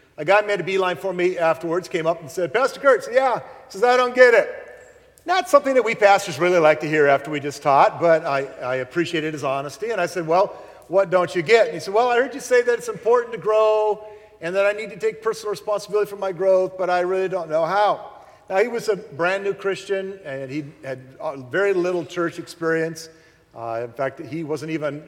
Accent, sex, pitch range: American, male, 150-200 Hz